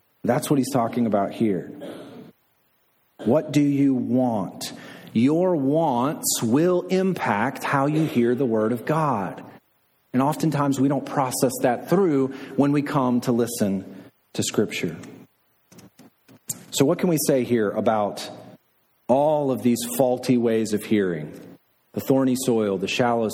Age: 40-59